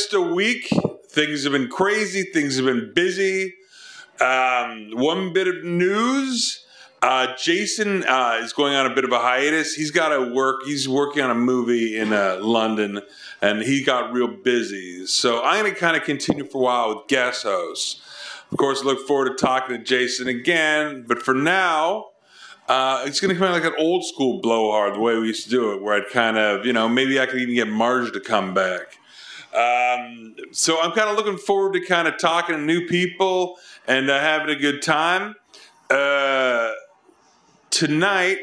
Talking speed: 325 wpm